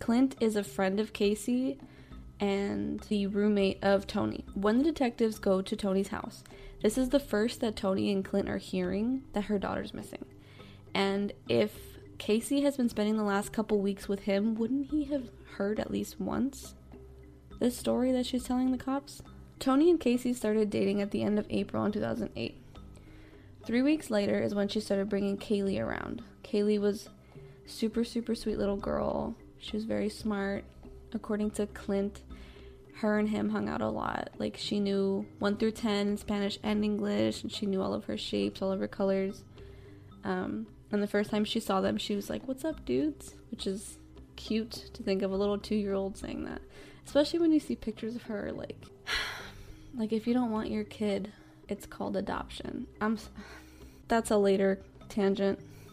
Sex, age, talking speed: female, 20-39, 185 wpm